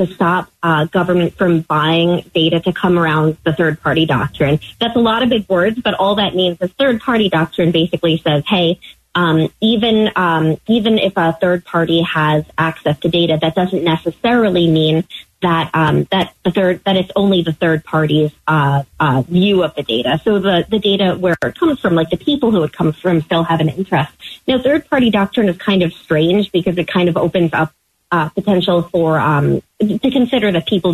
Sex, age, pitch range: female, 30-49, 160-195 Hz